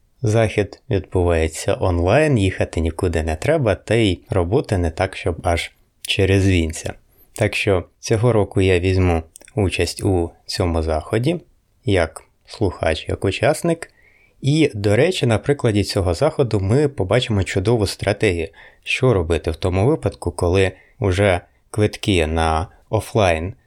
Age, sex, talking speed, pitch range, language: 20-39, male, 130 wpm, 90-120 Hz, Ukrainian